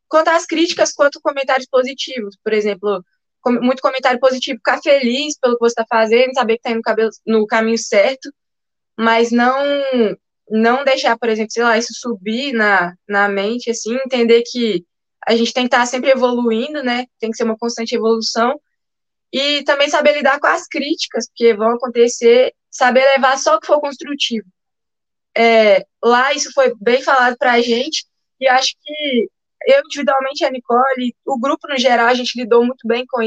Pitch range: 230-270 Hz